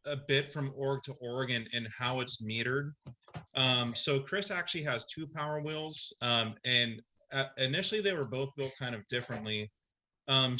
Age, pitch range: 30-49, 115-135 Hz